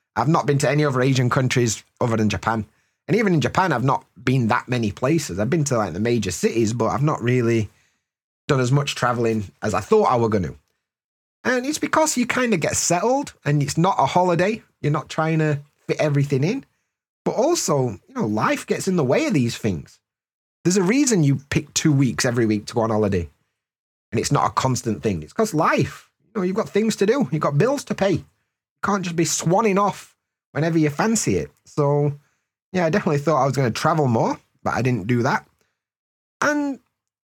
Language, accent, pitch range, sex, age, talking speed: English, British, 120-180 Hz, male, 30-49, 220 wpm